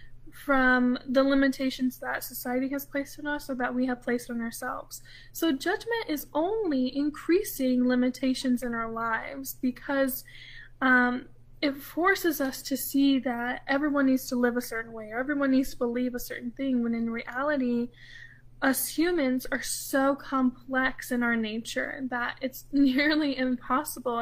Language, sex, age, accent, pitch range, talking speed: English, female, 10-29, American, 240-275 Hz, 155 wpm